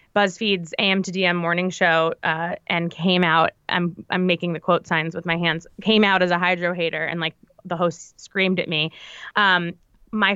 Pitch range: 175-220 Hz